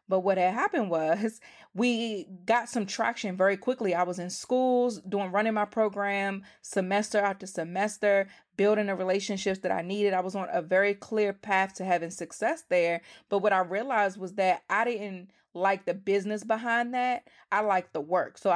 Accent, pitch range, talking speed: American, 180-205 Hz, 185 wpm